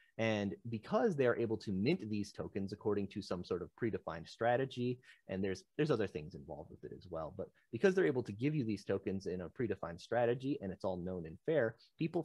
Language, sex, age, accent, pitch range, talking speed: English, male, 30-49, American, 100-130 Hz, 220 wpm